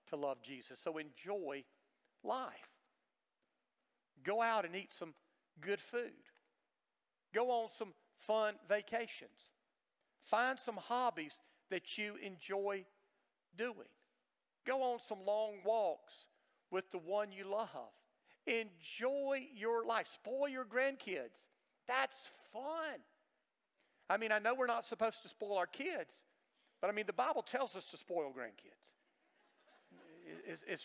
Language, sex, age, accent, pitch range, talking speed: English, male, 50-69, American, 190-245 Hz, 125 wpm